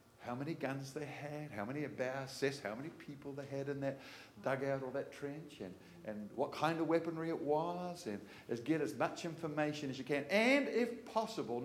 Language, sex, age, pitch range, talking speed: English, male, 50-69, 130-180 Hz, 200 wpm